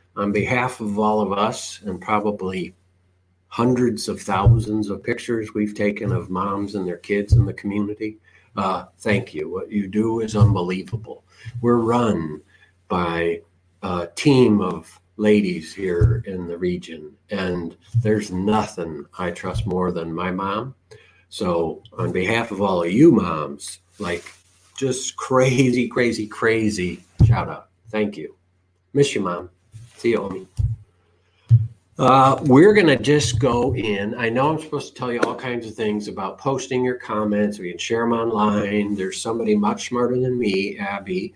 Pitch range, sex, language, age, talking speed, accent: 95-115 Hz, male, English, 50-69, 150 wpm, American